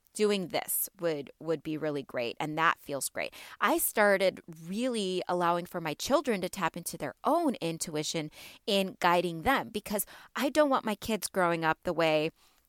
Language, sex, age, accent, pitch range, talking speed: English, female, 20-39, American, 175-245 Hz, 175 wpm